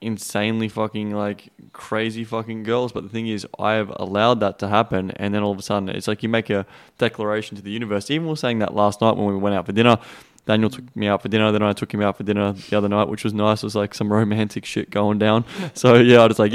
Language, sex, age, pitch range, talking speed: English, male, 20-39, 105-120 Hz, 275 wpm